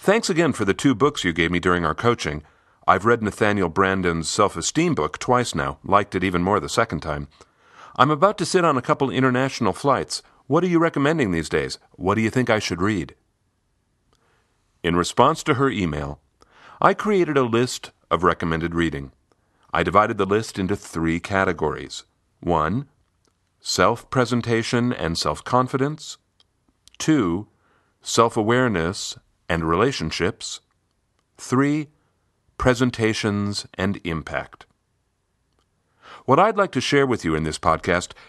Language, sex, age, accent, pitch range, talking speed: English, male, 40-59, American, 85-130 Hz, 140 wpm